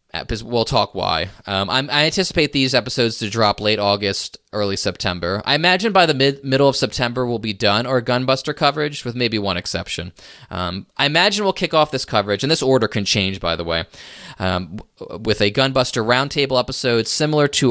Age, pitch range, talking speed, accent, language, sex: 20-39, 100-130 Hz, 195 wpm, American, English, male